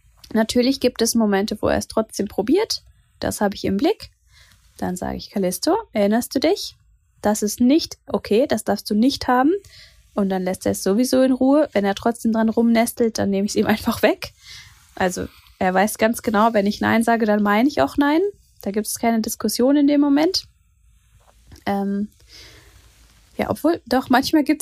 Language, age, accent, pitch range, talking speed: German, 20-39, German, 205-280 Hz, 190 wpm